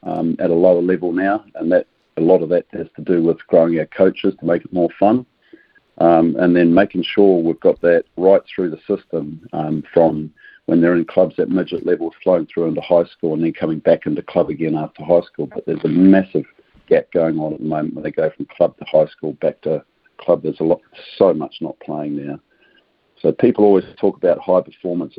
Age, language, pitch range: 50-69, English, 80-95 Hz